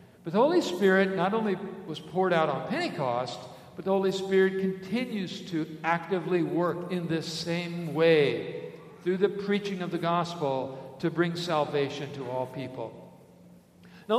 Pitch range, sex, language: 165-200 Hz, male, English